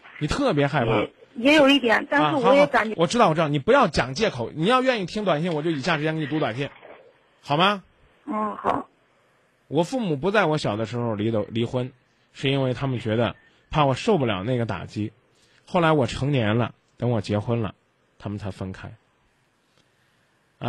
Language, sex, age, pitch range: Chinese, male, 20-39, 115-150 Hz